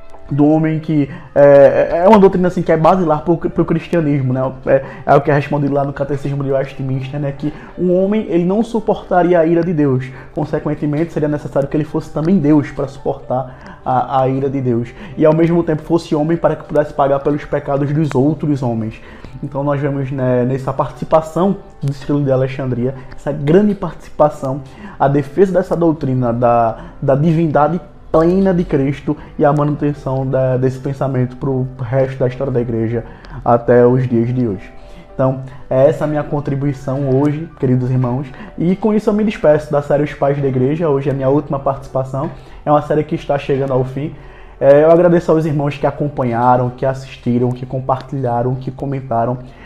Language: Portuguese